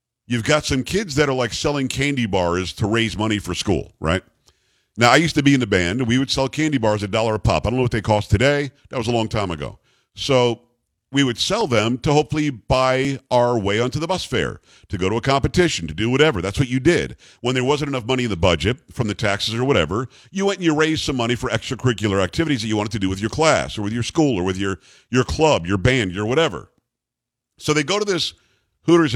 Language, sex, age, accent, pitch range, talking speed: English, male, 50-69, American, 110-145 Hz, 250 wpm